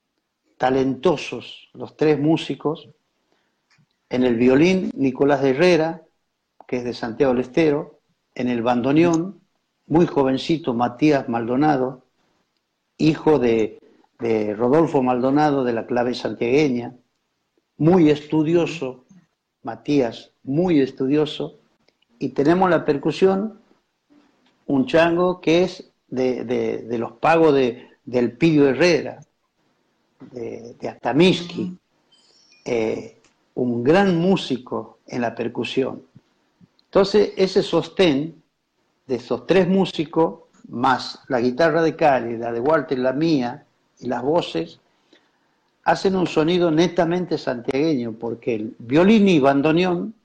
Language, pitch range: Spanish, 130-175 Hz